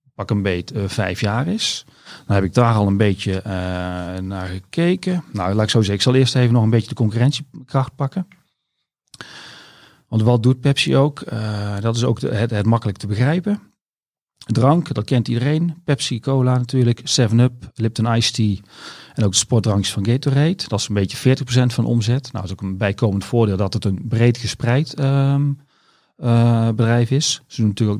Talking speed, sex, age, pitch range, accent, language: 185 wpm, male, 40-59, 105-125 Hz, Dutch, Dutch